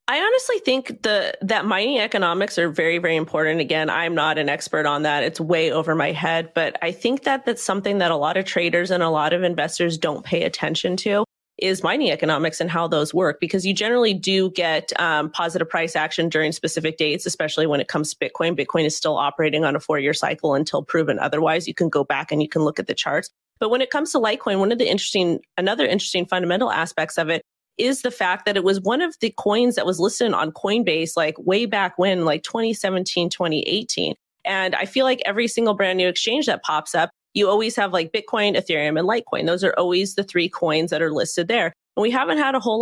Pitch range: 165-205 Hz